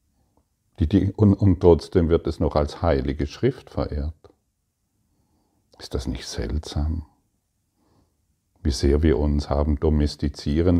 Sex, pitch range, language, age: male, 75-100 Hz, German, 50-69